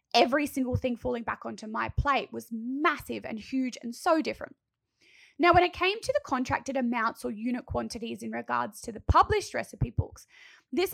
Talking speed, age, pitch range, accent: 185 wpm, 20-39, 225-285 Hz, Australian